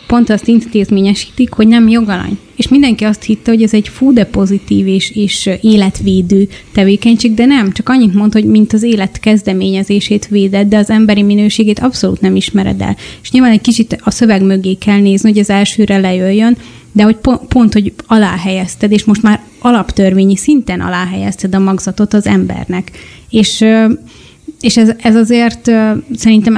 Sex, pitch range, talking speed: female, 195-220 Hz, 165 wpm